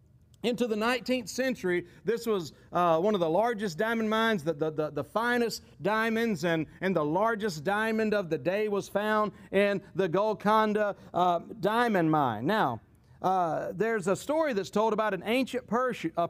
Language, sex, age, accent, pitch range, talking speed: English, male, 40-59, American, 175-240 Hz, 175 wpm